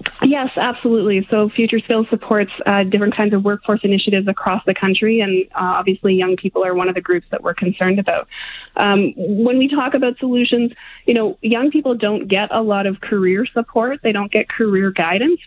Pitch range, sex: 185-220 Hz, female